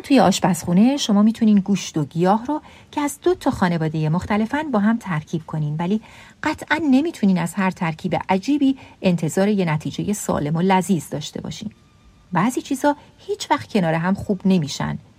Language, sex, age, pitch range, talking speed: Persian, female, 40-59, 180-260 Hz, 160 wpm